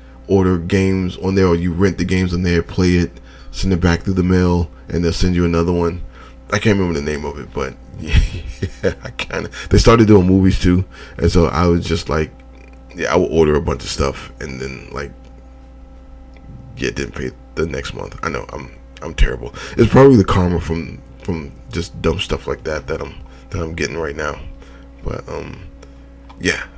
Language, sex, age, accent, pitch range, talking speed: English, male, 20-39, American, 70-100 Hz, 210 wpm